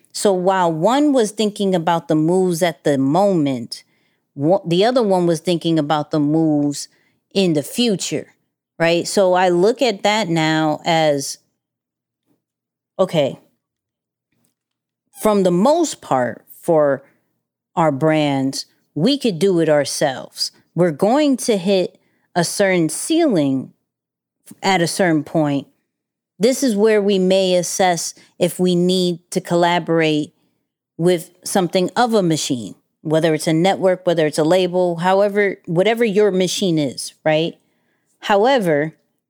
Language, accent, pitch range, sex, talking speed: English, American, 160-205 Hz, female, 130 wpm